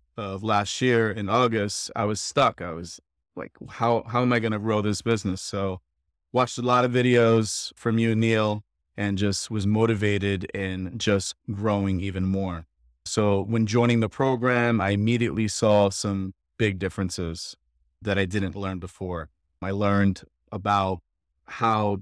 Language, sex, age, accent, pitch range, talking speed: English, male, 30-49, American, 95-115 Hz, 160 wpm